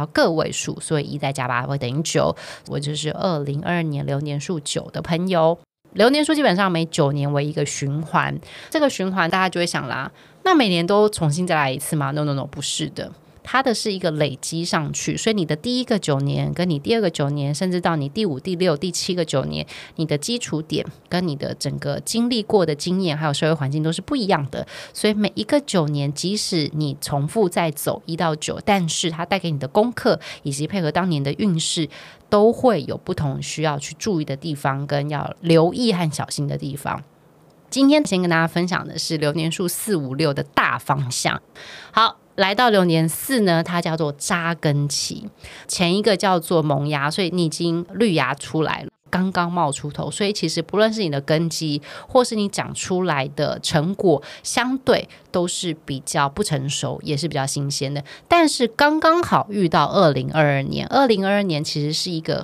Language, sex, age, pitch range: Chinese, female, 20-39, 145-190 Hz